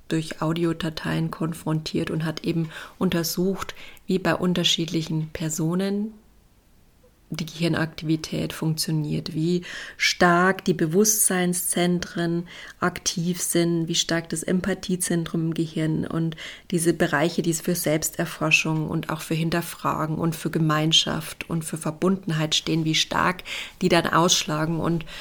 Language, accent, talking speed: German, German, 120 wpm